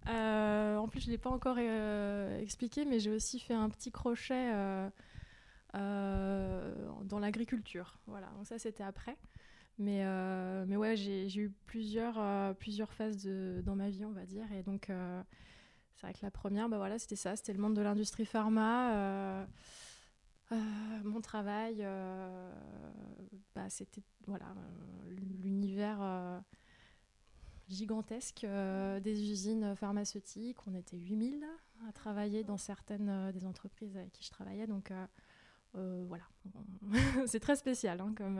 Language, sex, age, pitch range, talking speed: French, female, 20-39, 195-220 Hz, 155 wpm